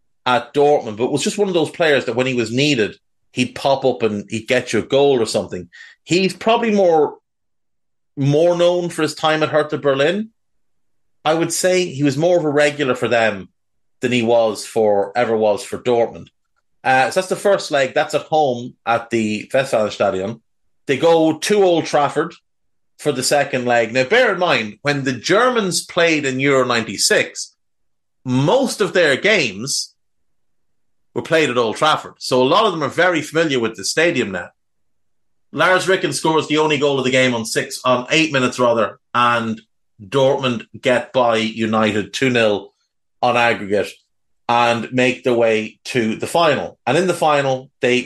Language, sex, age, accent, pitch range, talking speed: English, male, 30-49, Irish, 115-150 Hz, 180 wpm